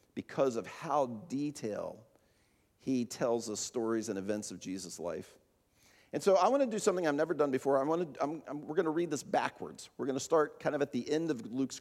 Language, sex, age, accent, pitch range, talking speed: English, male, 40-59, American, 130-195 Hz, 235 wpm